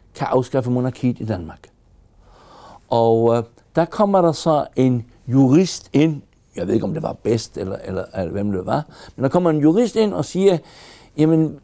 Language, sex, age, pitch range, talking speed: Danish, male, 60-79, 125-170 Hz, 190 wpm